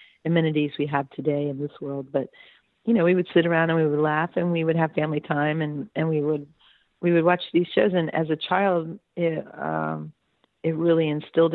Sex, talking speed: female, 220 wpm